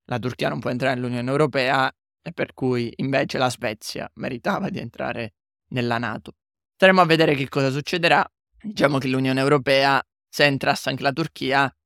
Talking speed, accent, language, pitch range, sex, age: 165 wpm, native, Italian, 125-150 Hz, male, 20-39